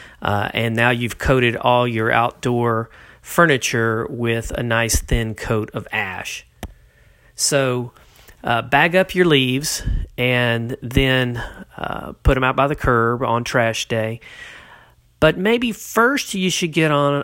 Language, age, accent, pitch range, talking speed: English, 40-59, American, 115-140 Hz, 145 wpm